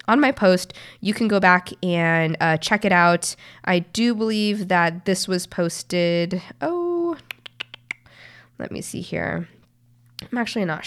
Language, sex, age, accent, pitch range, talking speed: English, female, 20-39, American, 165-200 Hz, 150 wpm